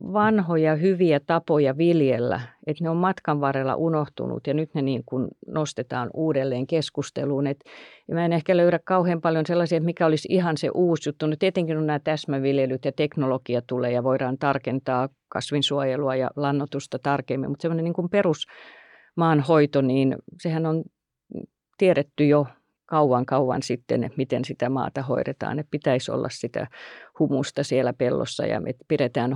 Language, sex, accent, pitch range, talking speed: Finnish, female, native, 135-165 Hz, 150 wpm